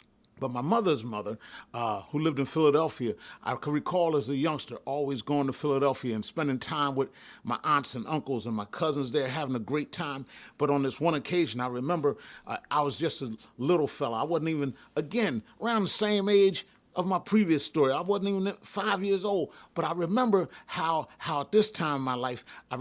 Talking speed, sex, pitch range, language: 210 wpm, male, 130-160 Hz, English